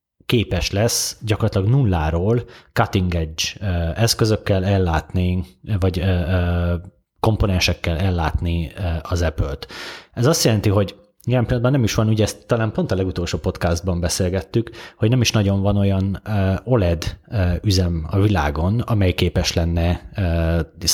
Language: Hungarian